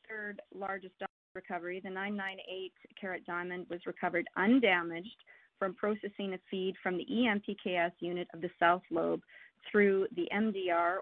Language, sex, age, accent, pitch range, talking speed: English, female, 30-49, American, 170-200 Hz, 140 wpm